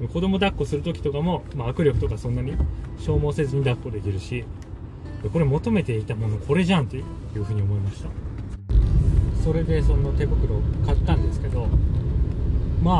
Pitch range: 85-105 Hz